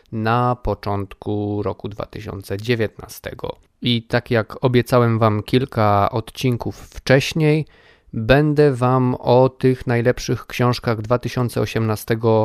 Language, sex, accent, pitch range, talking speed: Polish, male, native, 105-125 Hz, 90 wpm